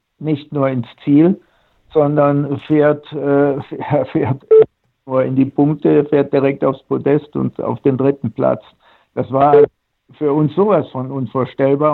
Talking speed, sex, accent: 145 wpm, male, German